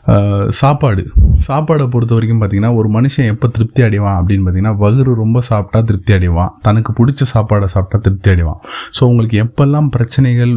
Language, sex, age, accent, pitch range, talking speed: Tamil, male, 20-39, native, 100-120 Hz, 155 wpm